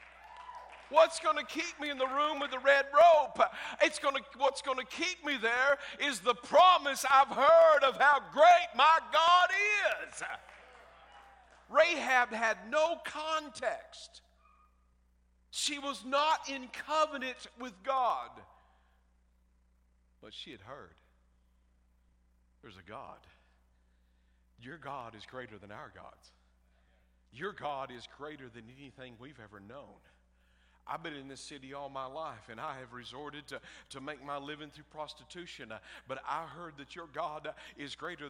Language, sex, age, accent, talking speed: English, male, 50-69, American, 150 wpm